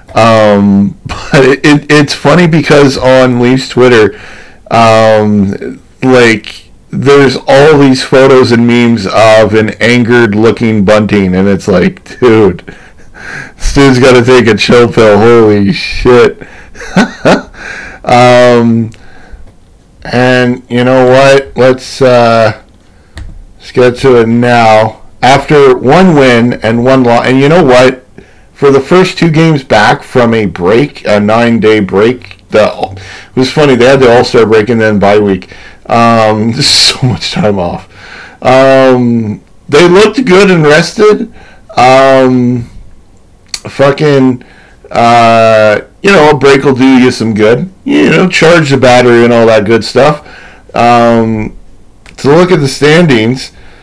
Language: English